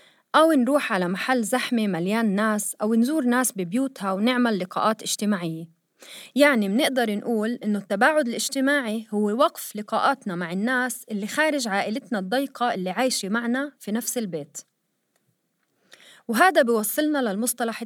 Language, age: Arabic, 30-49